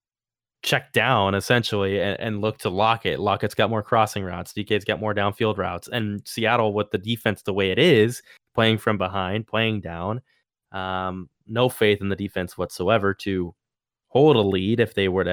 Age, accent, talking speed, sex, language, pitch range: 20-39, American, 190 wpm, male, English, 100-125 Hz